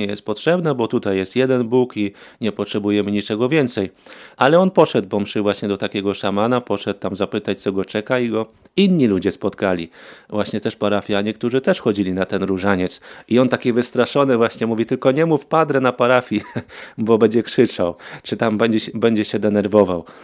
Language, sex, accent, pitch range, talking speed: Polish, male, native, 100-130 Hz, 180 wpm